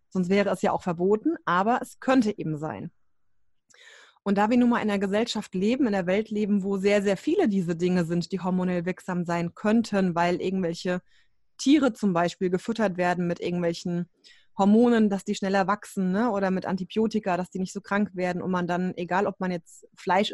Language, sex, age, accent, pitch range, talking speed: German, female, 20-39, German, 185-225 Hz, 200 wpm